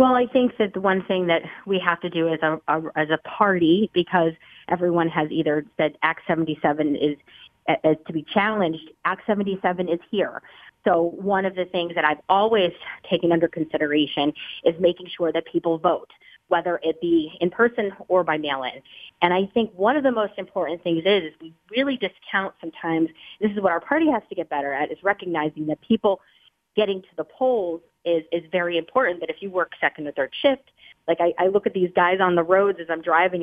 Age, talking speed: 30-49, 205 wpm